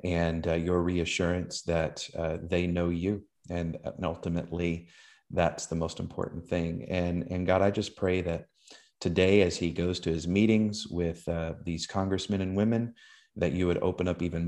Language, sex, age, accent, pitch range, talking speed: English, male, 30-49, American, 85-100 Hz, 180 wpm